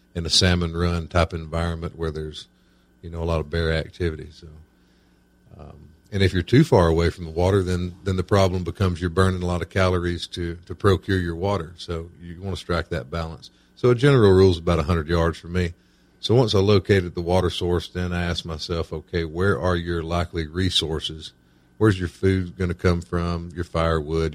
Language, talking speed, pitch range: English, 205 wpm, 80-95 Hz